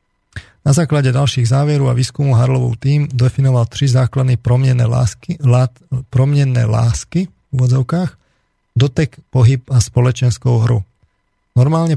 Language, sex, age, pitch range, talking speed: Slovak, male, 40-59, 120-130 Hz, 110 wpm